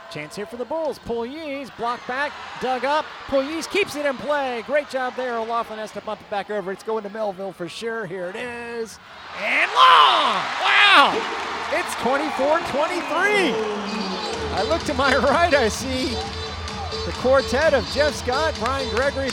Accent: American